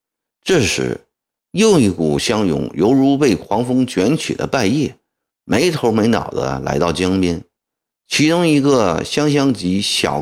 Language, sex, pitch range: Chinese, male, 80-130 Hz